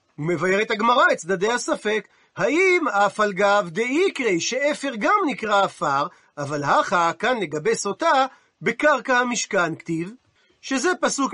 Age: 40-59